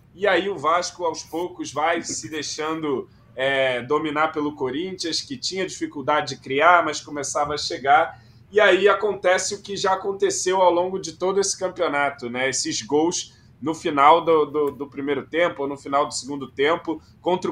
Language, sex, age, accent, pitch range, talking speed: Portuguese, male, 20-39, Brazilian, 135-160 Hz, 170 wpm